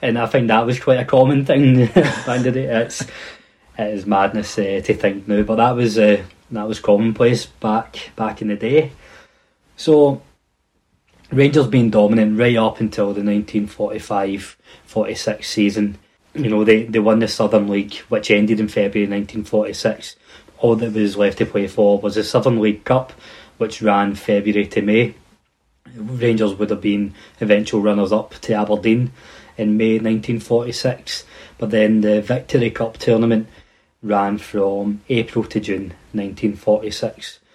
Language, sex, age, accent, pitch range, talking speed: English, male, 20-39, British, 105-115 Hz, 155 wpm